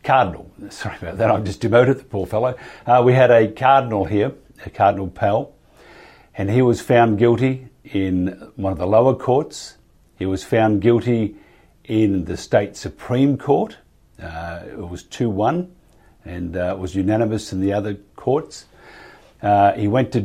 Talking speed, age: 165 wpm, 50-69